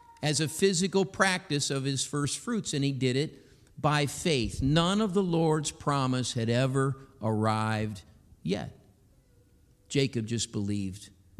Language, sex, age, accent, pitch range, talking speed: English, male, 50-69, American, 120-195 Hz, 135 wpm